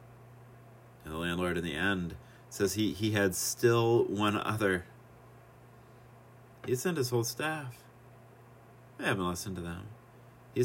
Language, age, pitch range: English, 30-49, 100-120 Hz